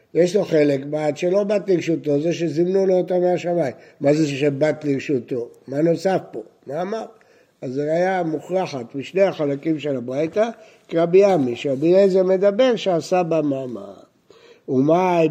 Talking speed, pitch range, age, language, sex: 150 wpm, 145-195 Hz, 60-79, Hebrew, male